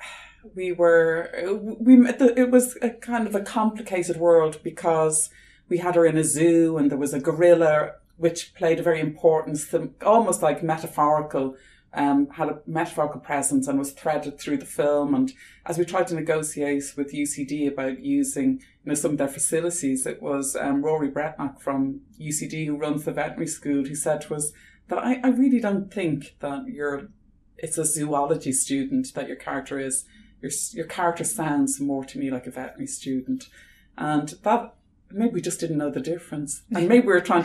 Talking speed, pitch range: 185 wpm, 145-190 Hz